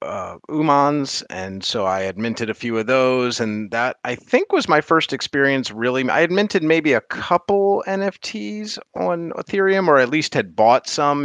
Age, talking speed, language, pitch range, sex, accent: 30-49, 185 wpm, English, 105-145 Hz, male, American